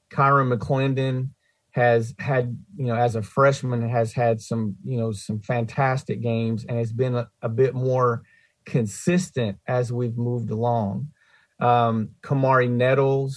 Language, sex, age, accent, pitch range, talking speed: English, male, 40-59, American, 115-130 Hz, 145 wpm